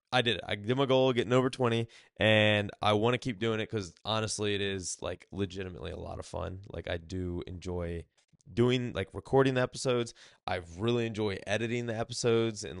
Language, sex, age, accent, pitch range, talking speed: English, male, 20-39, American, 95-110 Hz, 205 wpm